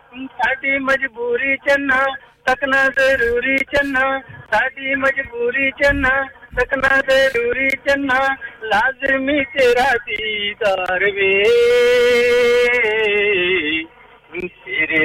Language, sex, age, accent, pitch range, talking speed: English, male, 50-69, Indian, 235-315 Hz, 70 wpm